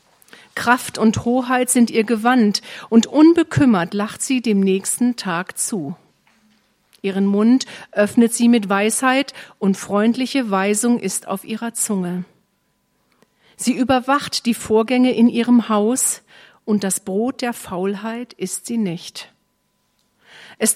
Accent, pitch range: German, 200-245 Hz